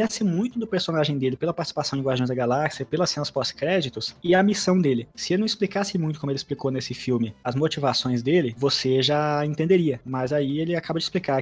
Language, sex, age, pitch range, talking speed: Portuguese, male, 20-39, 130-180 Hz, 205 wpm